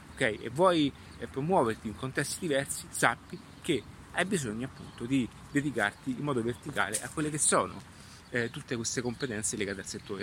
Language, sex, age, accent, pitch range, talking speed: Italian, male, 30-49, native, 110-135 Hz, 165 wpm